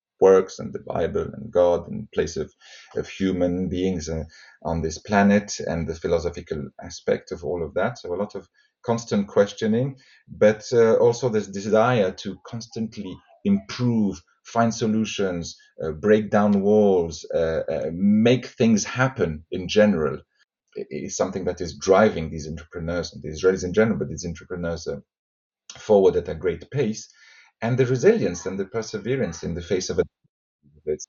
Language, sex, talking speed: English, male, 160 wpm